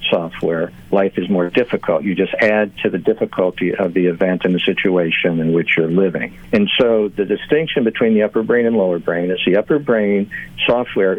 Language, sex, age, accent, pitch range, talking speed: English, male, 60-79, American, 90-105 Hz, 200 wpm